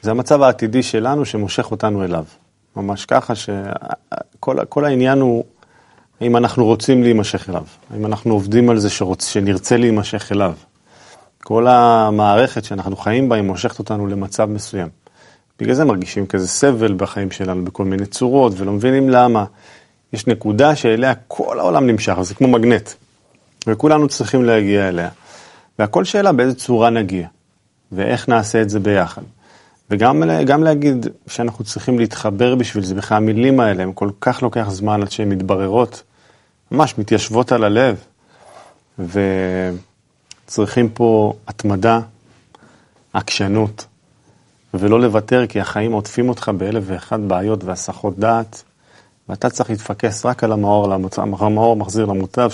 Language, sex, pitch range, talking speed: Hebrew, male, 100-120 Hz, 135 wpm